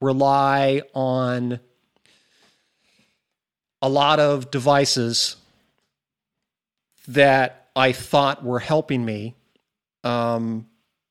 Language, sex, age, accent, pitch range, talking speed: English, male, 40-59, American, 115-140 Hz, 70 wpm